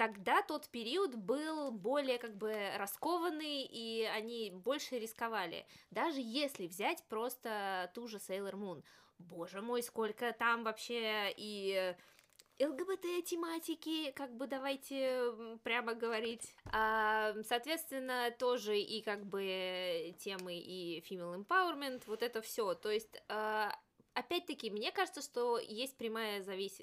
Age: 20-39